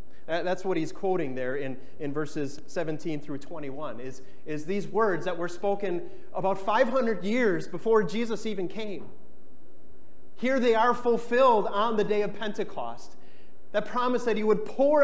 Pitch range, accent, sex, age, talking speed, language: 155-215 Hz, American, male, 30-49, 160 wpm, English